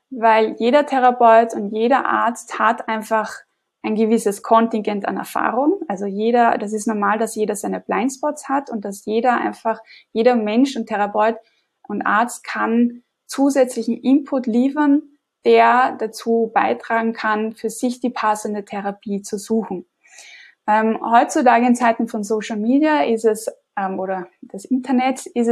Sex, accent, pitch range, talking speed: female, German, 215-255 Hz, 145 wpm